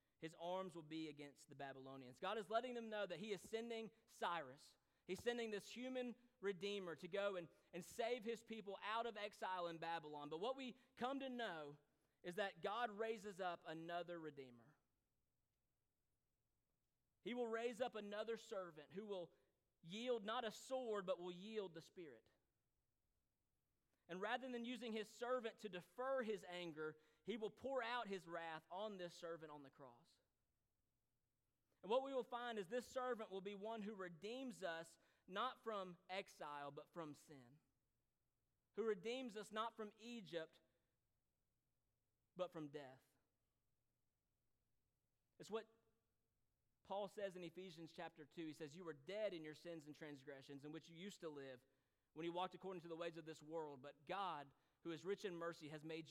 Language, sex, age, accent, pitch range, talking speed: English, male, 30-49, American, 150-215 Hz, 170 wpm